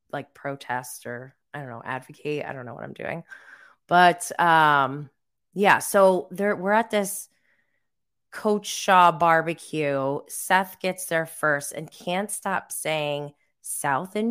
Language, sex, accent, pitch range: English, female, American, 165-225 Hz